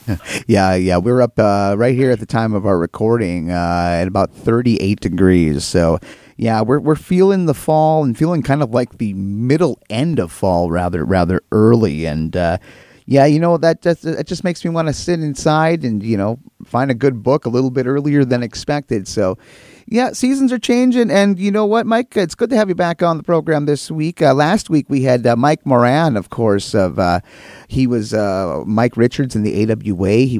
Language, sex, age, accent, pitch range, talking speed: English, male, 30-49, American, 105-155 Hz, 215 wpm